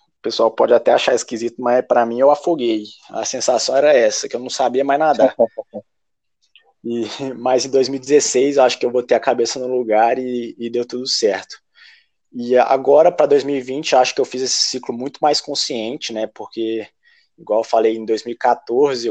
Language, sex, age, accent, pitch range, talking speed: Portuguese, male, 20-39, Brazilian, 115-135 Hz, 190 wpm